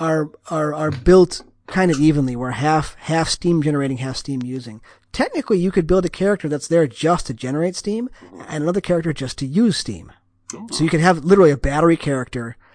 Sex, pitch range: male, 130-175 Hz